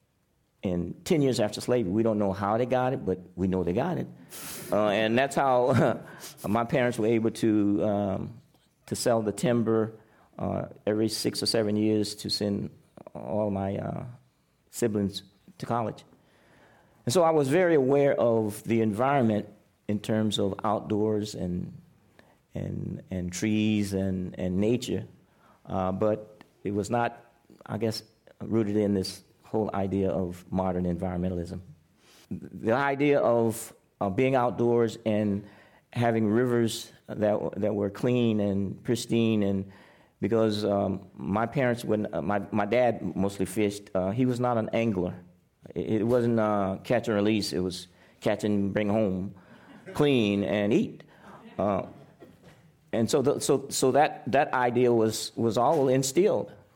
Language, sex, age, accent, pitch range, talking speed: English, male, 50-69, American, 100-120 Hz, 150 wpm